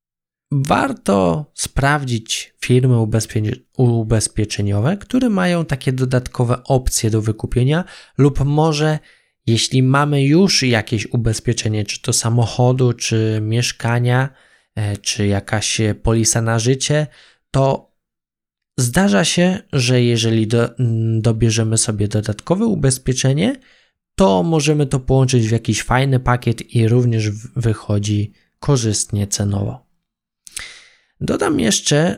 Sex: male